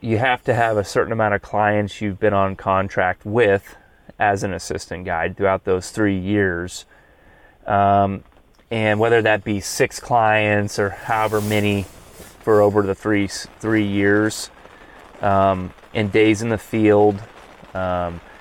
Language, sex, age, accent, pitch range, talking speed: English, male, 30-49, American, 95-110 Hz, 145 wpm